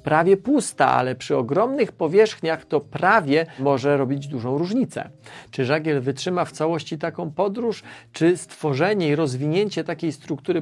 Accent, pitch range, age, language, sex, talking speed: native, 145-175 Hz, 40-59, Polish, male, 140 wpm